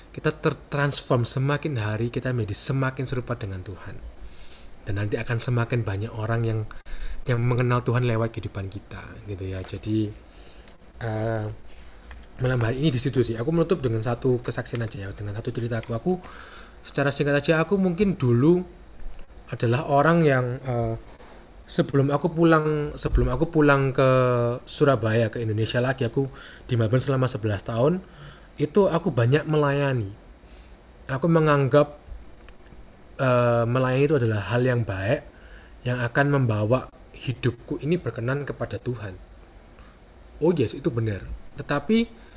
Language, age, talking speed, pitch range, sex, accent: Indonesian, 20-39, 135 wpm, 110-150 Hz, male, native